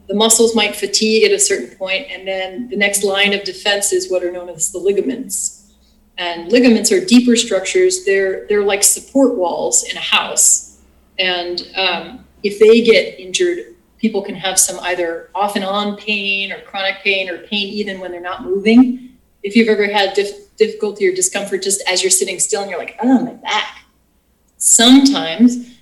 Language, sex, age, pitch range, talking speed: English, female, 30-49, 195-240 Hz, 185 wpm